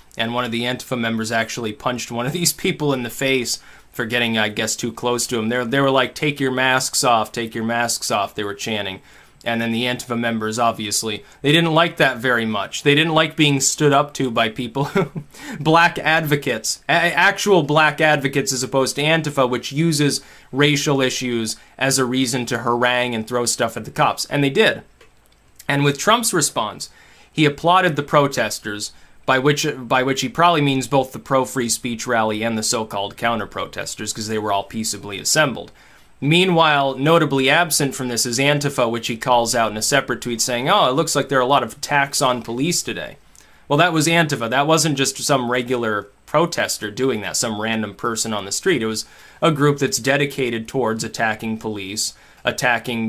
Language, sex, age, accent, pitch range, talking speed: English, male, 20-39, American, 115-145 Hz, 200 wpm